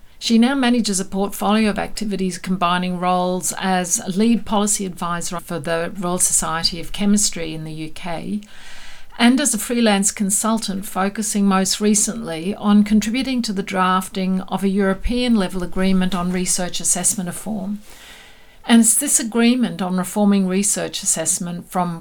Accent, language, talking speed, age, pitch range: Australian, English, 145 wpm, 50-69, 180-215 Hz